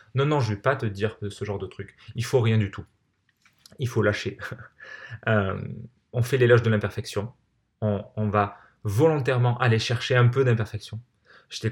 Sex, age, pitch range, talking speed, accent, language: male, 20-39, 105-125 Hz, 190 wpm, French, French